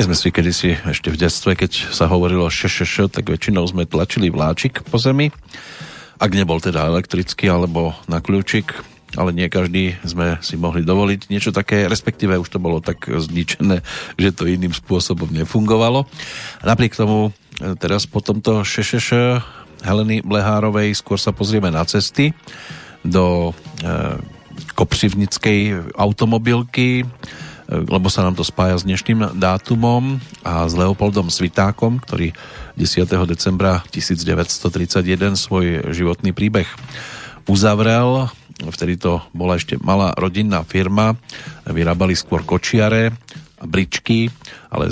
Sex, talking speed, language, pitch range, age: male, 130 wpm, Slovak, 90-110 Hz, 40-59